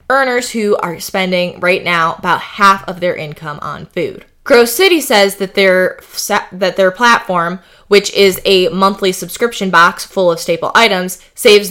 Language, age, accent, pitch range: English, 20-39, American, 175-215 Hz